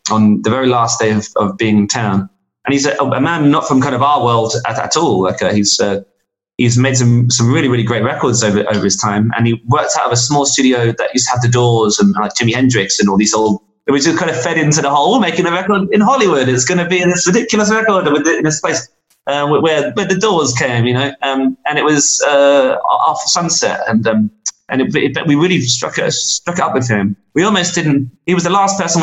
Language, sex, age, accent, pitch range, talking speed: English, male, 30-49, British, 120-155 Hz, 260 wpm